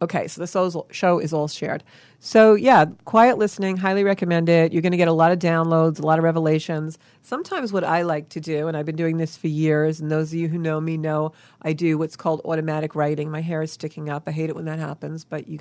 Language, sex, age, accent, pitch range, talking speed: English, female, 40-59, American, 155-180 Hz, 255 wpm